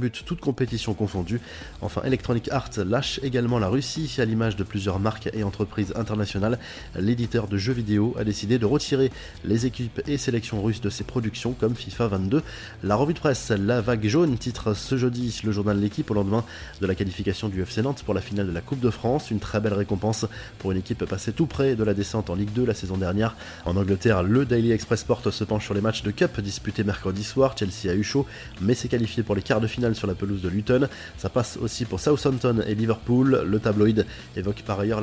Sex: male